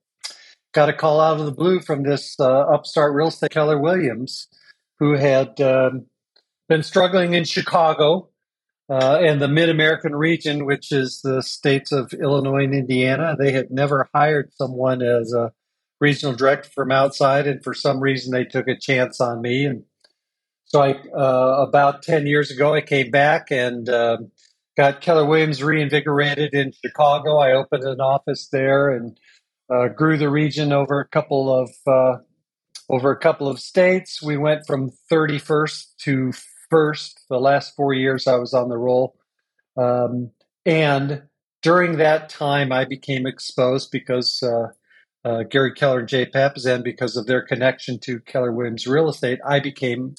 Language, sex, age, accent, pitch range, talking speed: English, male, 50-69, American, 130-150 Hz, 165 wpm